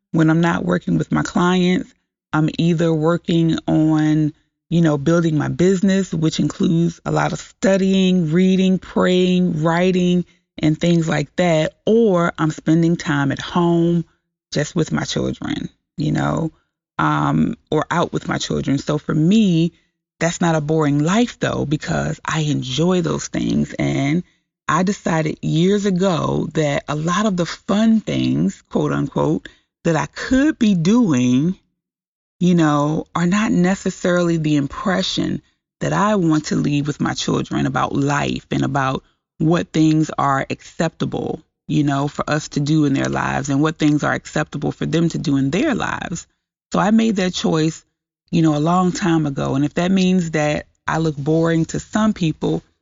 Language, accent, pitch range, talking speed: English, American, 155-185 Hz, 165 wpm